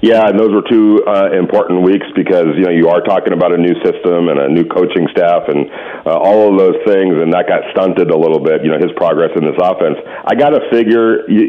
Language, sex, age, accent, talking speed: English, male, 40-59, American, 245 wpm